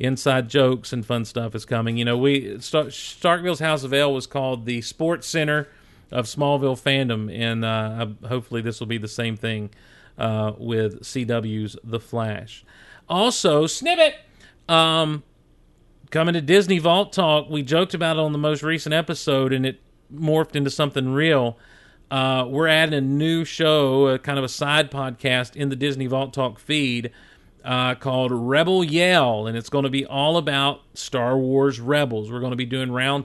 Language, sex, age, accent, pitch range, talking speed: English, male, 40-59, American, 120-150 Hz, 175 wpm